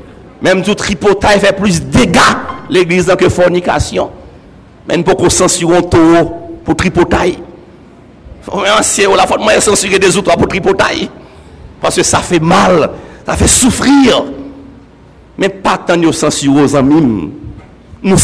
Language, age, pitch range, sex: French, 60-79, 170-235 Hz, male